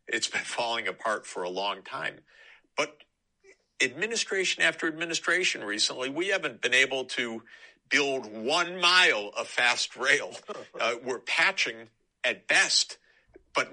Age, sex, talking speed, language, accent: 50-69, male, 130 wpm, English, American